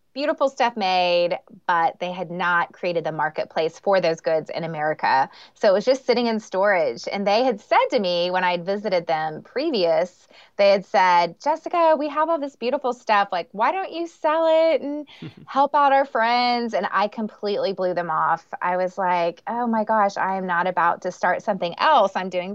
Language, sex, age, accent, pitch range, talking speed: English, female, 20-39, American, 170-220 Hz, 205 wpm